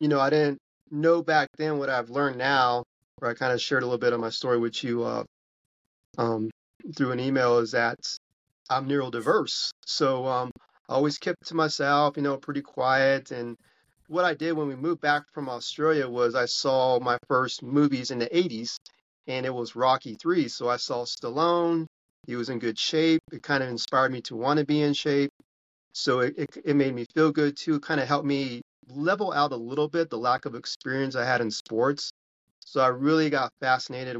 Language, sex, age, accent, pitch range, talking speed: English, male, 40-59, American, 120-145 Hz, 210 wpm